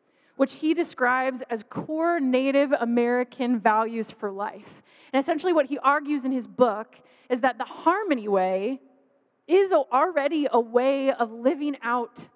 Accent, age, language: American, 20-39, English